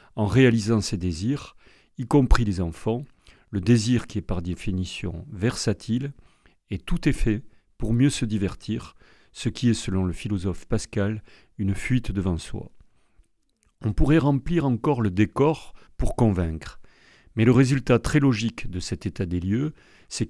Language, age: French, 40-59